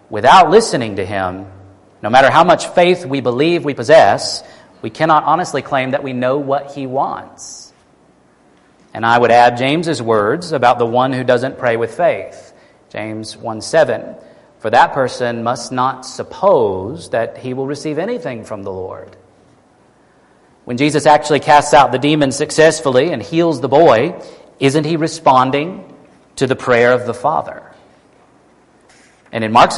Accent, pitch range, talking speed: American, 125-160 Hz, 155 wpm